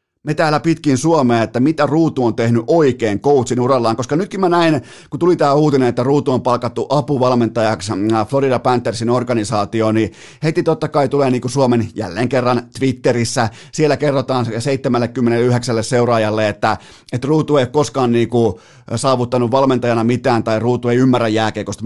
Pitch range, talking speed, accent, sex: 115-140 Hz, 155 wpm, native, male